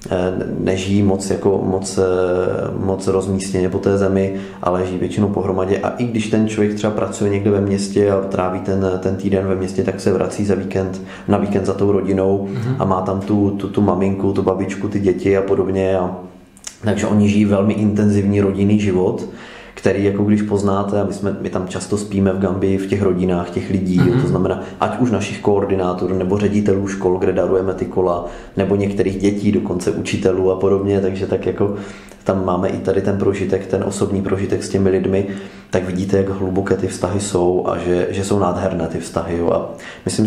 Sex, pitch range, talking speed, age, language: male, 95-100 Hz, 190 wpm, 20-39, Czech